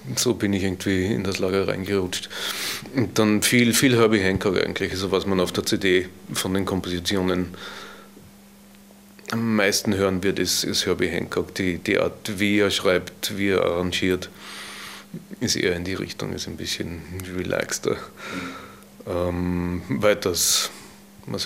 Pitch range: 95-110 Hz